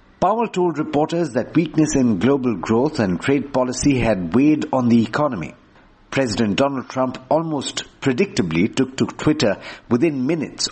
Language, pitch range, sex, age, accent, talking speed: English, 115-145 Hz, male, 60-79, Indian, 145 wpm